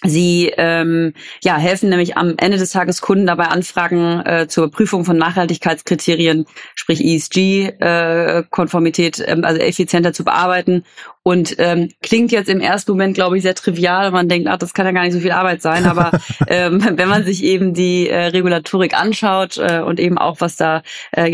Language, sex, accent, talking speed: German, female, German, 185 wpm